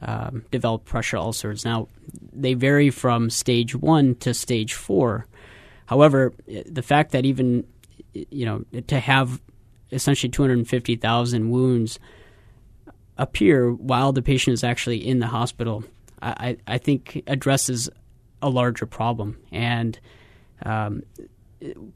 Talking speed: 120 wpm